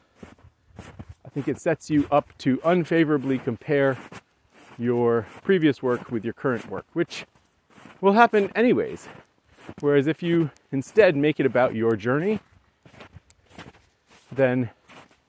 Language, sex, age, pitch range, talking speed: English, male, 30-49, 105-145 Hz, 120 wpm